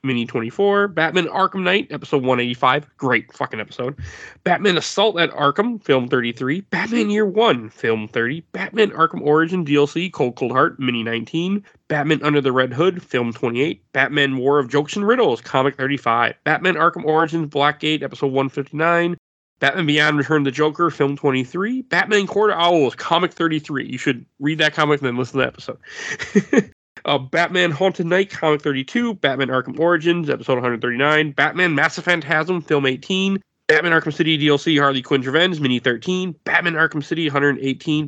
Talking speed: 165 wpm